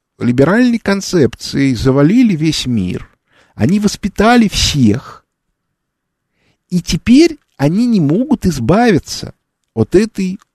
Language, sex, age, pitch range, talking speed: Russian, male, 50-69, 140-210 Hz, 90 wpm